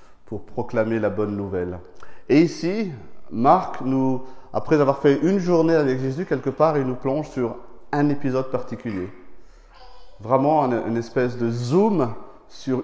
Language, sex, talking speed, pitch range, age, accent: French, male, 150 wpm, 120-150 Hz, 30-49, French